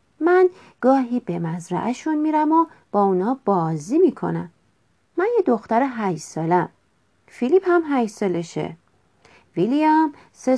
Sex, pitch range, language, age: female, 185-285 Hz, Persian, 40-59